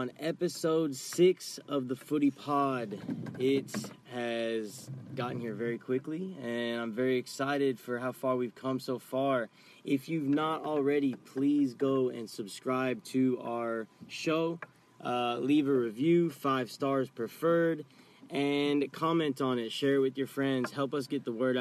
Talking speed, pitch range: 155 wpm, 120-140 Hz